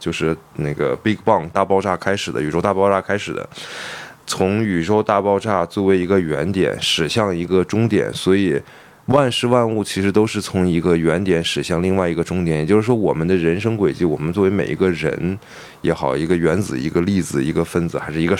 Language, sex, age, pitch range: Chinese, male, 20-39, 85-100 Hz